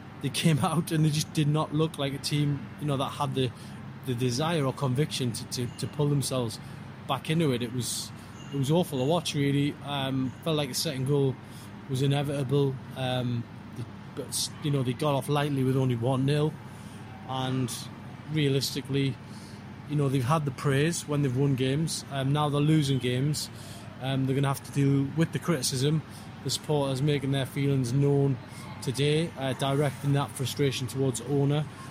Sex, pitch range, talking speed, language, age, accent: male, 130-150 Hz, 185 wpm, English, 20-39, British